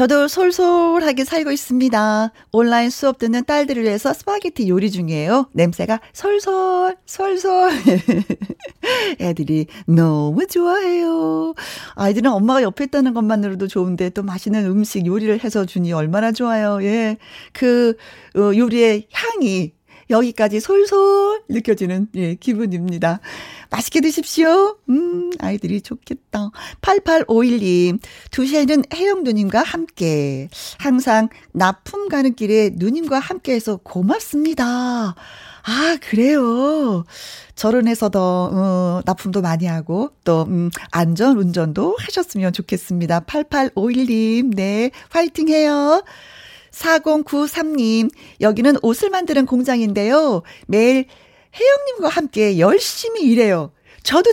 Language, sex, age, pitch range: Korean, female, 40-59, 200-305 Hz